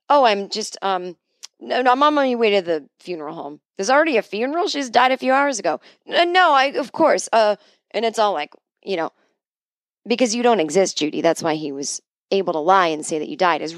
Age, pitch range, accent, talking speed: 30-49, 170-255 Hz, American, 230 wpm